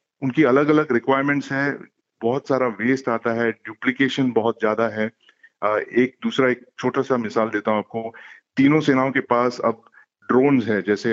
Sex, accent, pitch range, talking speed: male, native, 115-145 Hz, 165 wpm